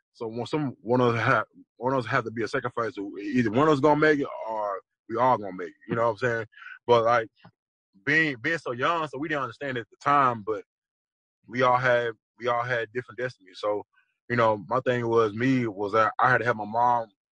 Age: 20-39